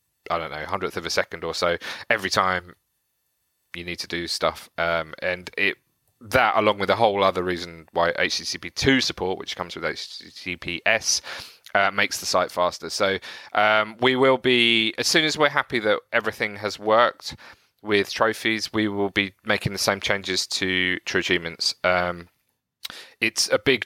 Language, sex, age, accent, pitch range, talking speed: English, male, 30-49, British, 90-105 Hz, 170 wpm